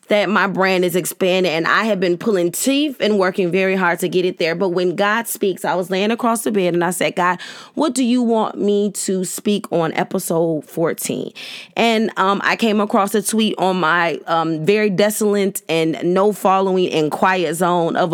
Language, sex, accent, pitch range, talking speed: English, female, American, 185-225 Hz, 205 wpm